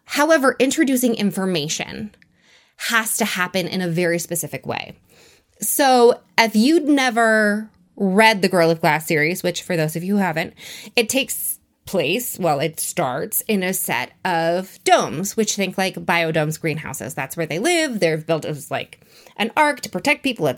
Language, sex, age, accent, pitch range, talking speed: English, female, 20-39, American, 175-240 Hz, 170 wpm